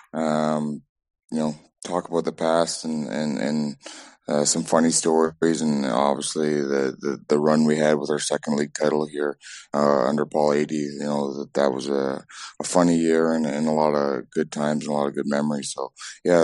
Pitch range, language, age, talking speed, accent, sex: 75-80 Hz, English, 20-39, 205 wpm, American, male